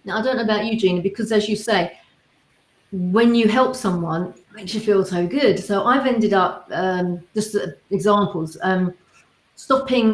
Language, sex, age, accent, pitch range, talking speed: English, female, 40-59, British, 190-250 Hz, 180 wpm